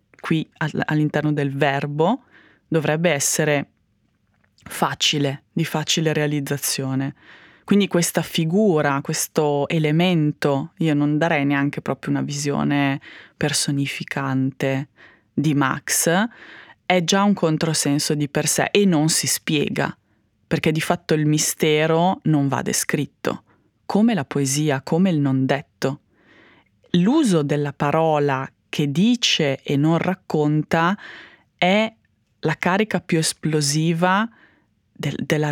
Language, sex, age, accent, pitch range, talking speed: Italian, female, 20-39, native, 140-170 Hz, 110 wpm